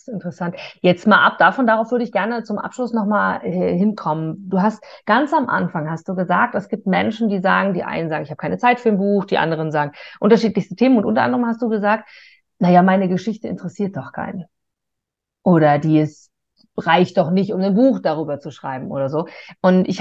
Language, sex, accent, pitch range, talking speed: German, female, German, 180-235 Hz, 205 wpm